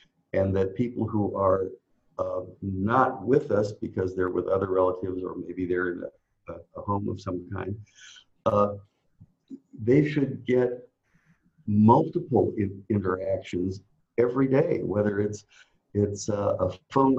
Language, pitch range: English, 95-125 Hz